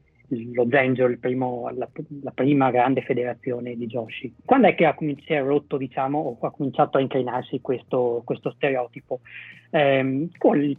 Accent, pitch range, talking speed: native, 125-150 Hz, 150 wpm